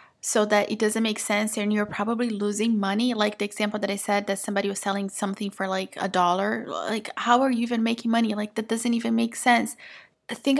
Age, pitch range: 20-39, 210-240 Hz